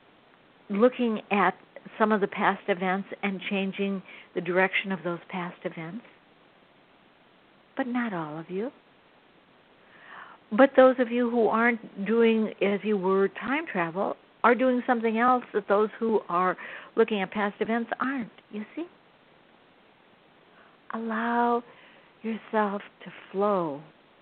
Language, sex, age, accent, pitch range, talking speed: English, female, 60-79, American, 180-230 Hz, 125 wpm